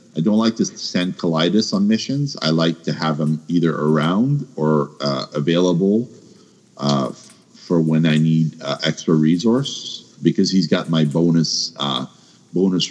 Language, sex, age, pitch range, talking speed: English, male, 50-69, 75-95 Hz, 155 wpm